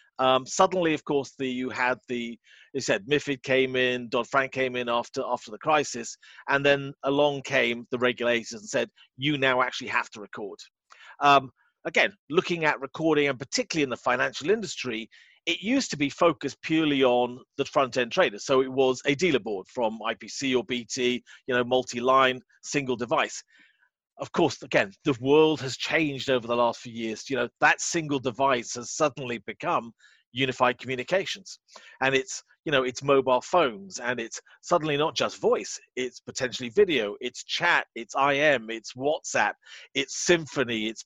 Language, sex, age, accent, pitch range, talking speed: English, male, 40-59, British, 125-150 Hz, 175 wpm